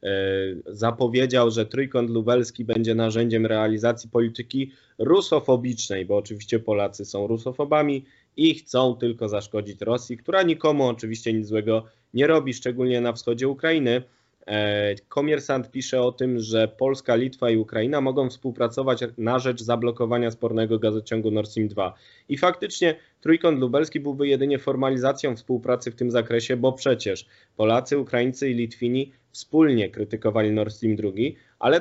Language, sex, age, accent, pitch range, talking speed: Polish, male, 20-39, native, 115-130 Hz, 135 wpm